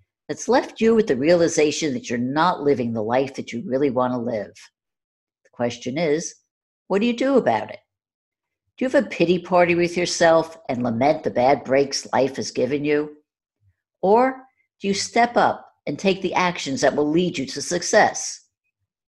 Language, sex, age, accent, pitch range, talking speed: English, female, 60-79, American, 135-190 Hz, 185 wpm